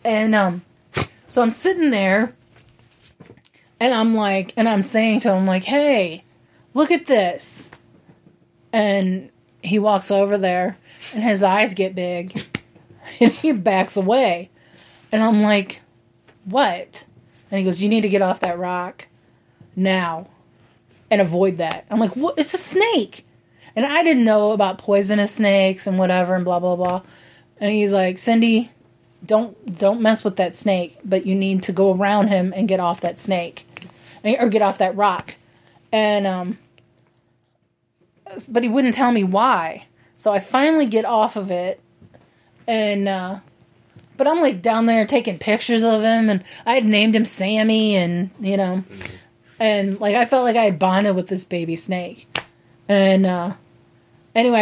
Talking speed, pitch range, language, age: 160 wpm, 185-220 Hz, English, 30-49